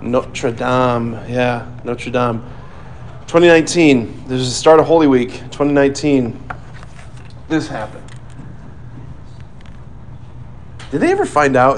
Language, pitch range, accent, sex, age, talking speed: English, 120-140 Hz, American, male, 30-49, 115 wpm